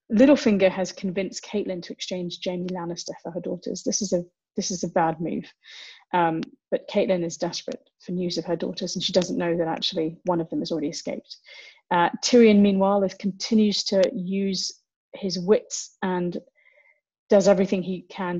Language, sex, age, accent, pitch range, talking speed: English, female, 30-49, British, 175-210 Hz, 180 wpm